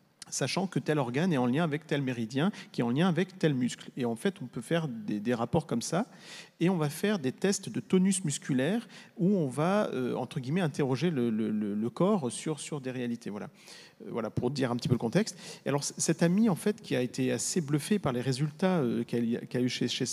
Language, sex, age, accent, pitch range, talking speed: French, male, 40-59, French, 130-190 Hz, 250 wpm